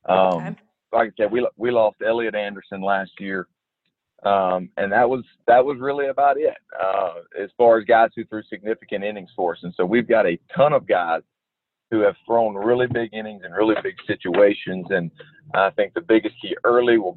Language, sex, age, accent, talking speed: English, male, 40-59, American, 200 wpm